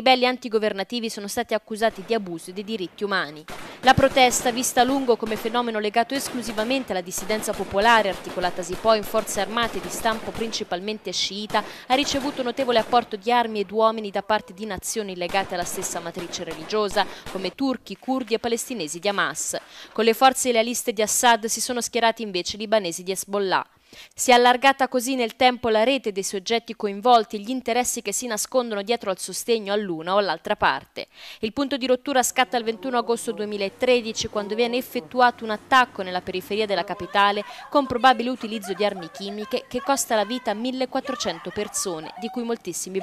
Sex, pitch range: female, 195-245 Hz